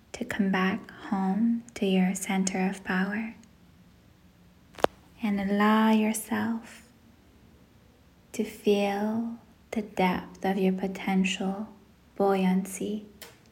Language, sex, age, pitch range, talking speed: English, female, 10-29, 200-225 Hz, 90 wpm